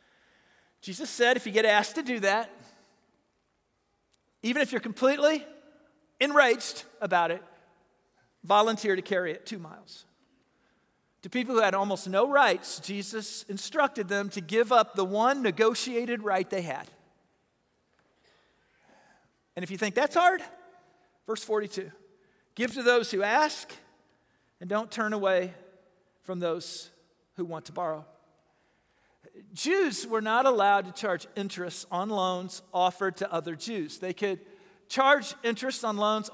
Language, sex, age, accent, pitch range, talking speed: English, male, 40-59, American, 190-285 Hz, 135 wpm